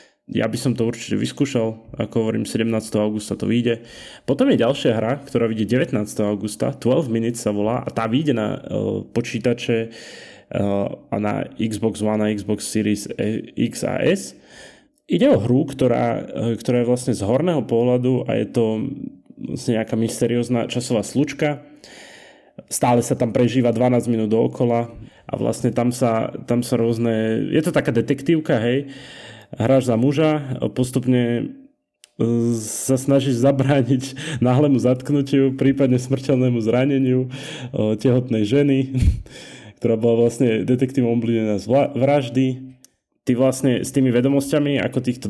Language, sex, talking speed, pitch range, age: Slovak, male, 140 wpm, 115-130 Hz, 20-39